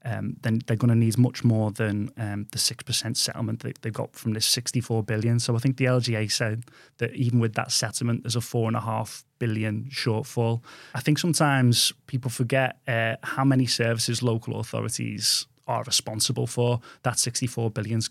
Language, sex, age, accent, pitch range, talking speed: English, male, 20-39, British, 115-135 Hz, 180 wpm